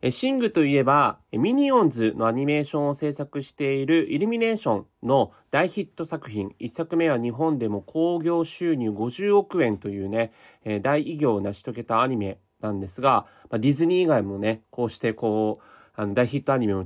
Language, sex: Japanese, male